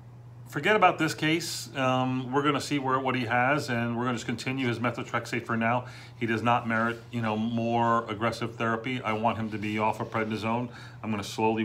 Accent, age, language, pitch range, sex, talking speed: American, 40-59, English, 115-125 Hz, male, 210 wpm